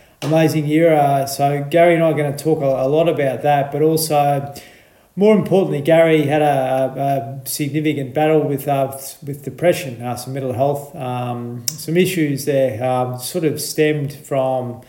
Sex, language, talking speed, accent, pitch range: male, English, 165 wpm, Australian, 130-150 Hz